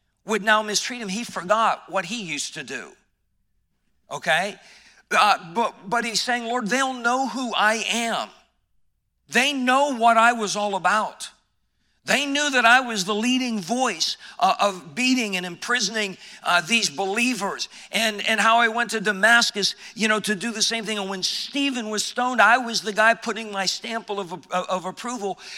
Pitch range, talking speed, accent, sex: 190-235 Hz, 180 wpm, American, male